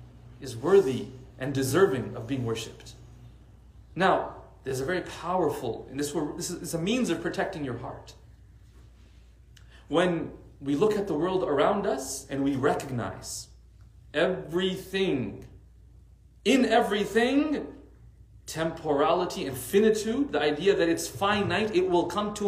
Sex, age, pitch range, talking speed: male, 40-59, 110-165 Hz, 125 wpm